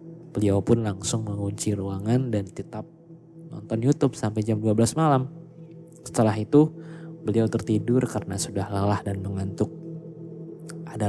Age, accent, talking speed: 20-39, native, 125 wpm